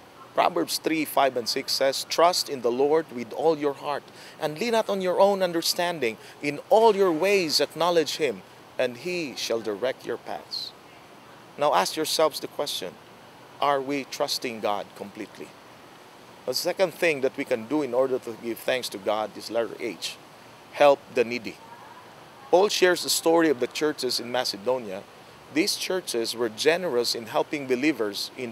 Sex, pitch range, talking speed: male, 135-185 Hz, 170 wpm